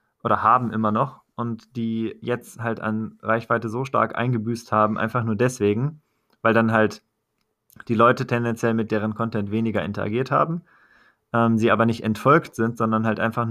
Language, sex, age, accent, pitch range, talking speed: German, male, 20-39, German, 105-115 Hz, 170 wpm